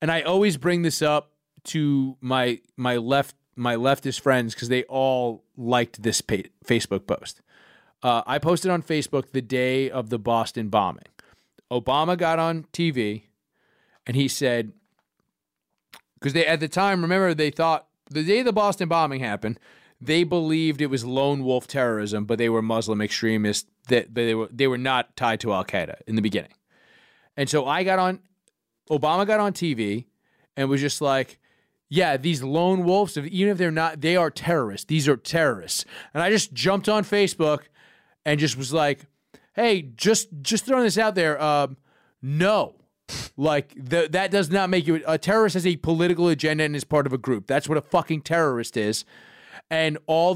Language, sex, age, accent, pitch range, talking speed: English, male, 30-49, American, 130-170 Hz, 180 wpm